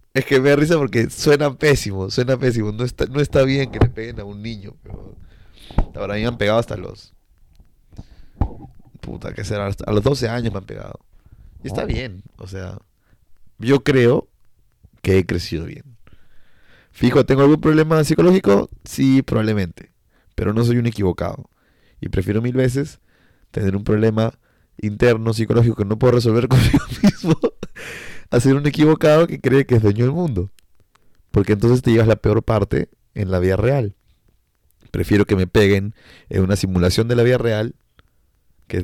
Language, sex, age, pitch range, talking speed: Spanish, male, 30-49, 100-125 Hz, 170 wpm